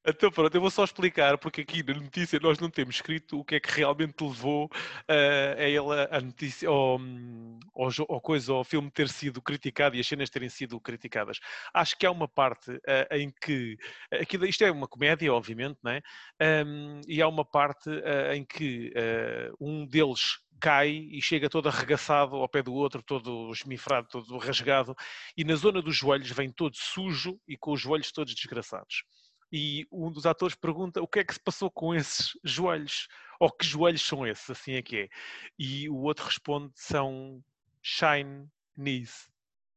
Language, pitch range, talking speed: English, 130-155 Hz, 190 wpm